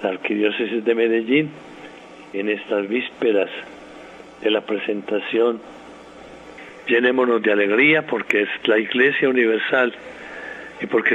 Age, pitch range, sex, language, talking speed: 60-79, 105-130 Hz, male, Spanish, 110 wpm